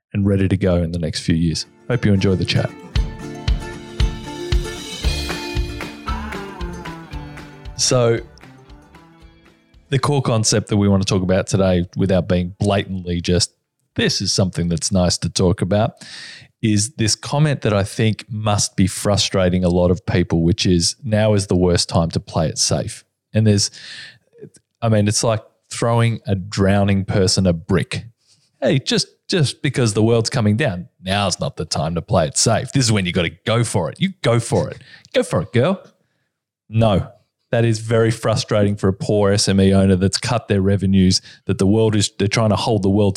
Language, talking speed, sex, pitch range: English, 180 wpm, male, 95-115 Hz